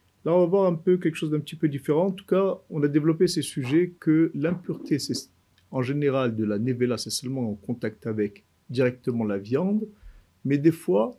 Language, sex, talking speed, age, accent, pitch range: French, male, 210 wpm, 50-69, French, 110-175 Hz